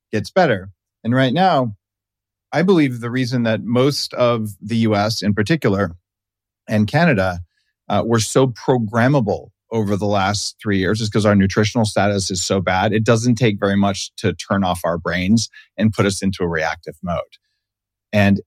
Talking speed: 170 wpm